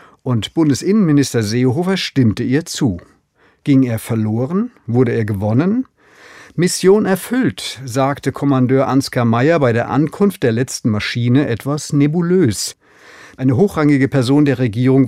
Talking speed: 125 wpm